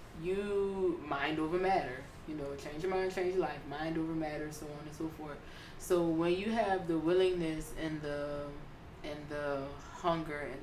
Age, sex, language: 20-39, female, English